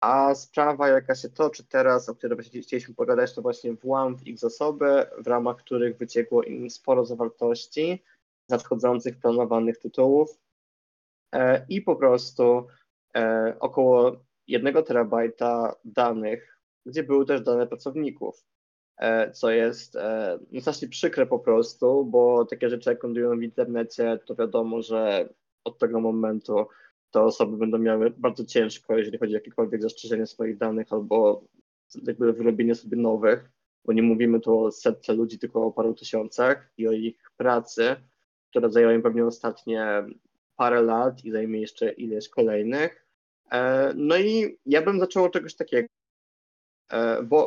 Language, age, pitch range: Polish, 20-39, 115-145 Hz